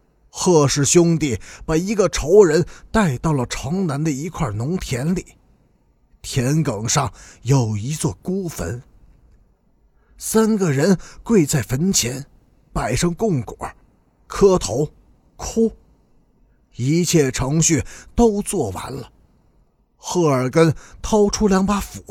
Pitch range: 125-190 Hz